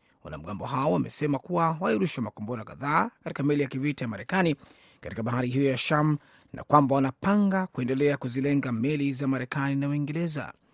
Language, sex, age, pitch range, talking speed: Swahili, male, 30-49, 125-160 Hz, 155 wpm